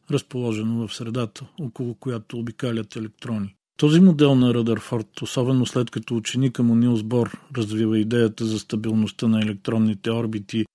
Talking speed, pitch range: 140 wpm, 110-125 Hz